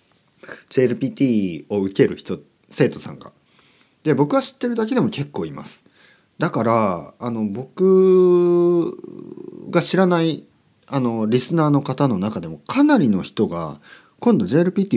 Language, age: Japanese, 40-59